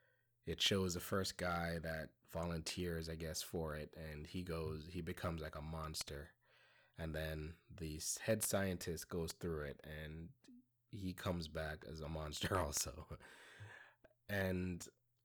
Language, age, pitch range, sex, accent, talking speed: English, 20-39, 80-115 Hz, male, American, 140 wpm